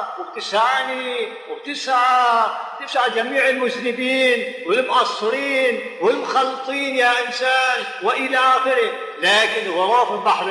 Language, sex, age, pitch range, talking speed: Arabic, male, 50-69, 180-260 Hz, 80 wpm